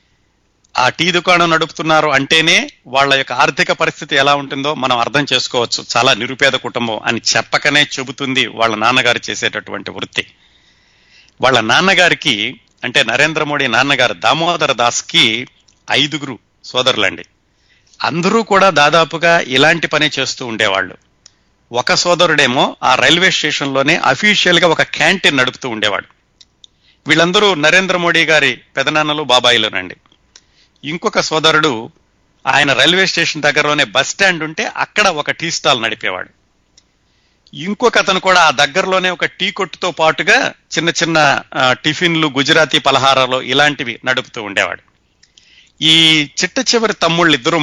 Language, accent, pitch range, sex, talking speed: Telugu, native, 130-170 Hz, male, 115 wpm